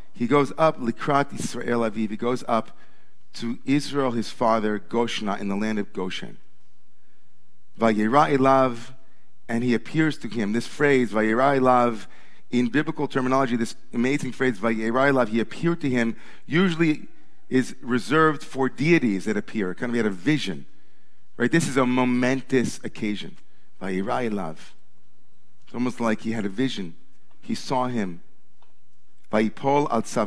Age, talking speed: 40-59, 150 wpm